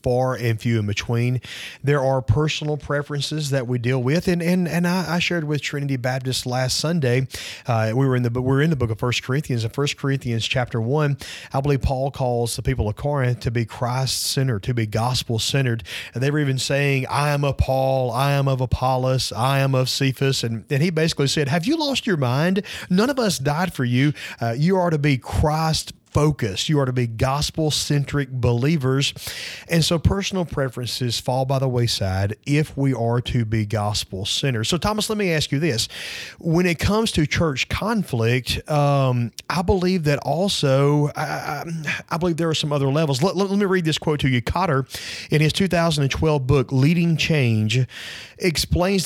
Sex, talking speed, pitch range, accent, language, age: male, 195 wpm, 125-155 Hz, American, English, 30-49